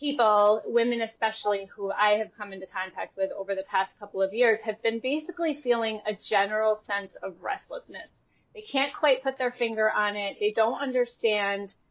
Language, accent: English, American